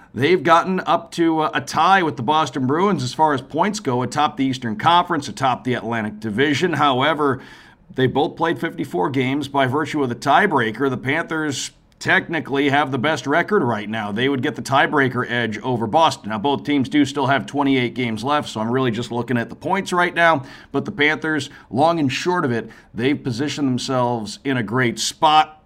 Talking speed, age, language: 200 wpm, 50-69, English